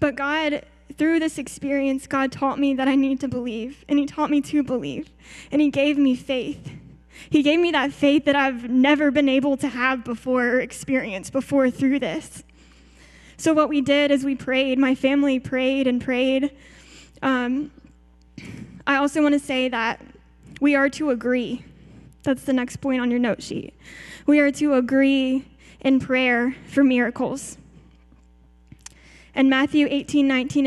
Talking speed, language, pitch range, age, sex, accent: 160 wpm, English, 245-280 Hz, 10-29, female, American